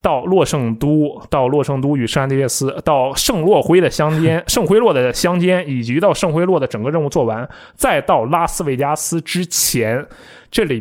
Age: 20-39